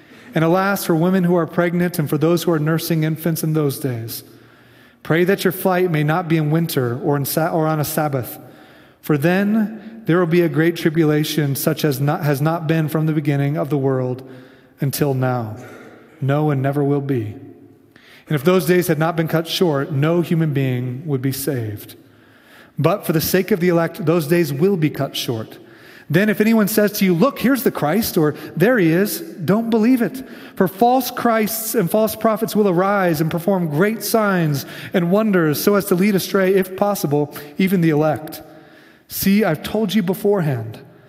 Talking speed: 190 wpm